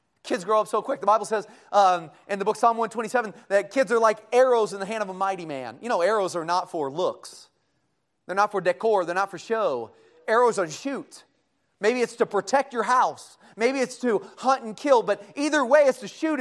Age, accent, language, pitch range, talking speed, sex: 30-49, American, English, 190-260 Hz, 230 wpm, male